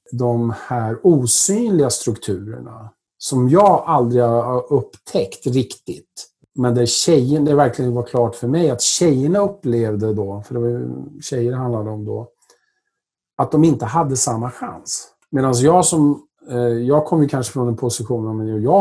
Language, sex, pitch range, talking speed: Swedish, male, 115-145 Hz, 155 wpm